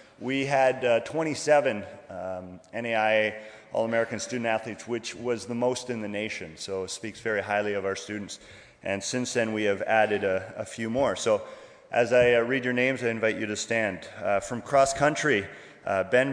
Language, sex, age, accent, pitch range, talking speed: English, male, 30-49, American, 105-125 Hz, 190 wpm